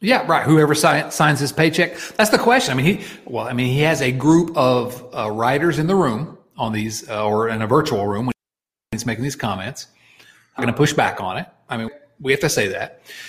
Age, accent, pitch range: 40-59, American, 115-160 Hz